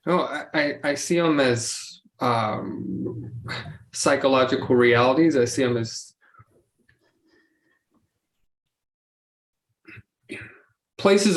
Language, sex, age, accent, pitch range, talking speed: English, male, 20-39, American, 125-165 Hz, 75 wpm